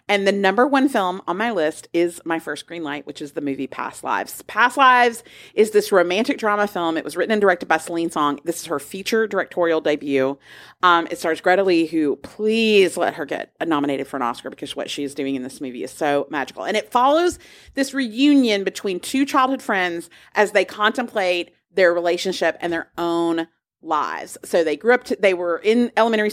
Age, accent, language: 40-59, American, English